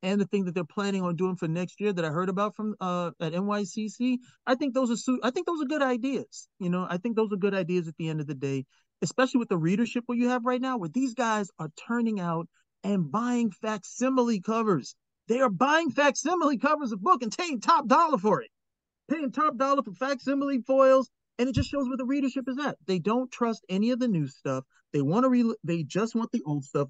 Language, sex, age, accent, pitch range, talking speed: English, male, 30-49, American, 175-240 Hz, 245 wpm